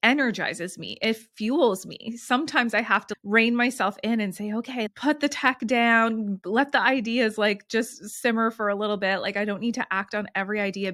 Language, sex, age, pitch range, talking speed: English, female, 20-39, 195-235 Hz, 210 wpm